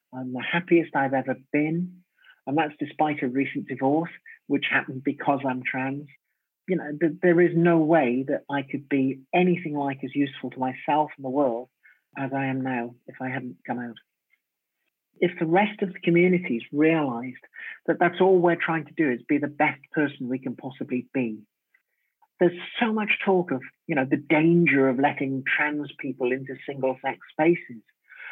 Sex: male